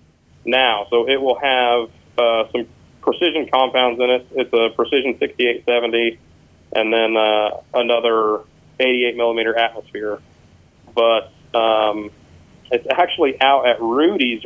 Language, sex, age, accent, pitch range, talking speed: English, male, 30-49, American, 110-125 Hz, 135 wpm